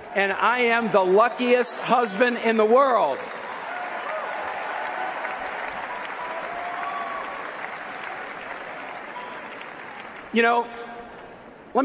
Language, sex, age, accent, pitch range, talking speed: English, male, 50-69, American, 210-250 Hz, 60 wpm